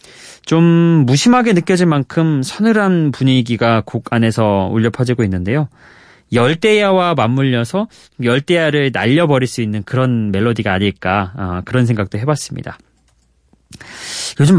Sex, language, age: male, Korean, 20-39